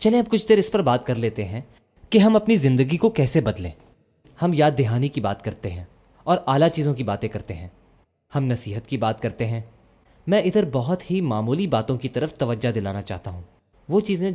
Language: Urdu